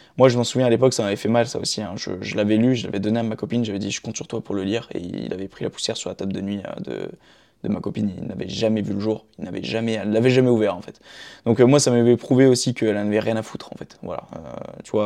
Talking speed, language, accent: 325 wpm, French, French